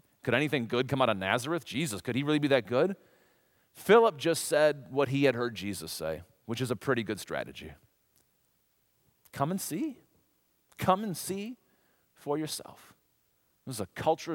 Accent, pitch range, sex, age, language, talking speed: American, 115-170 Hz, male, 40-59, English, 170 wpm